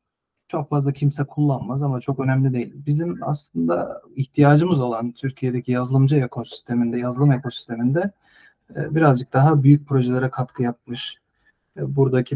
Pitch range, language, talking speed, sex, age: 125-155 Hz, Turkish, 115 wpm, male, 40-59